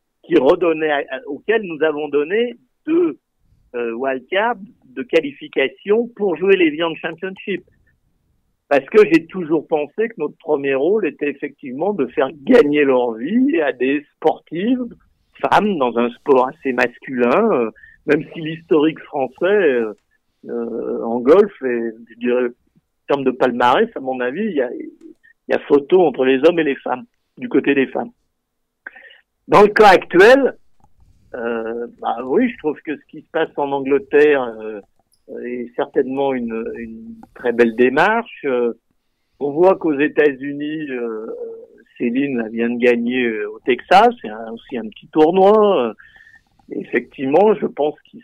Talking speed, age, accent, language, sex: 155 wpm, 50-69, French, French, male